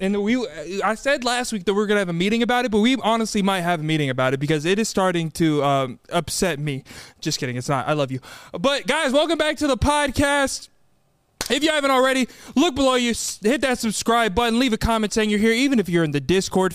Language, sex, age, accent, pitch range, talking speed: English, male, 20-39, American, 175-255 Hz, 250 wpm